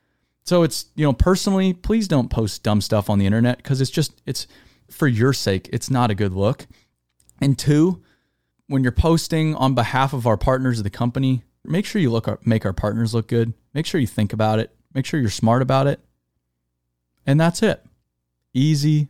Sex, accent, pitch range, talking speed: male, American, 105-150 Hz, 200 wpm